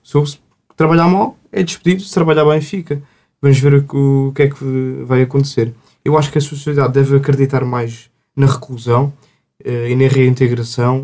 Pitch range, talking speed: 130-155 Hz, 170 wpm